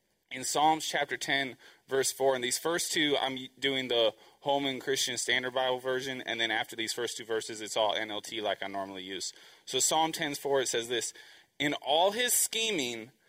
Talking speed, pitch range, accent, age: 195 wpm, 140-210 Hz, American, 20-39